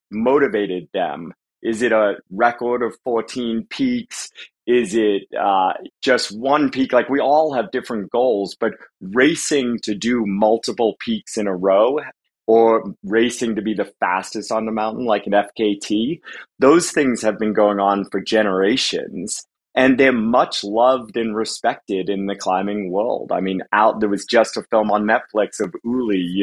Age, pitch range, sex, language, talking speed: 30-49, 100-120 Hz, male, English, 165 wpm